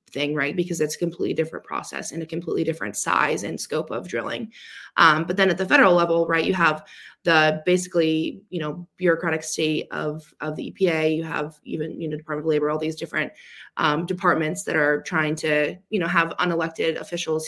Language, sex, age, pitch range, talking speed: English, female, 20-39, 155-180 Hz, 205 wpm